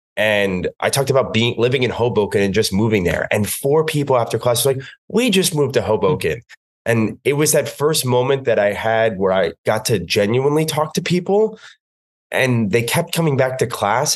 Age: 20-39